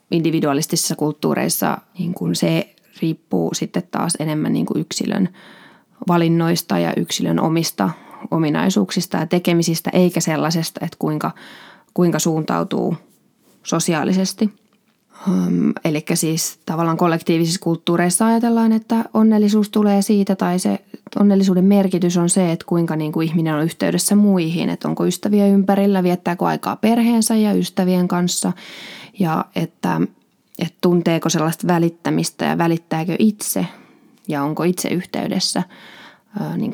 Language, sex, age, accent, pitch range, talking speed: Finnish, female, 20-39, native, 165-215 Hz, 120 wpm